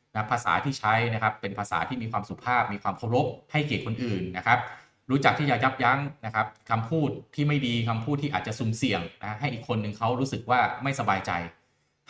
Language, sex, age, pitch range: Thai, male, 20-39, 100-135 Hz